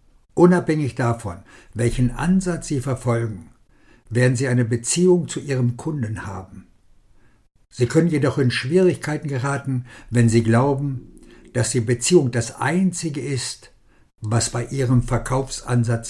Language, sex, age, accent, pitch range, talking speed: German, male, 60-79, German, 115-140 Hz, 125 wpm